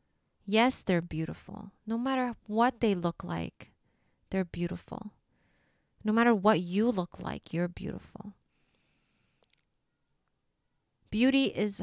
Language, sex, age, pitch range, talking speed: English, female, 30-49, 170-215 Hz, 105 wpm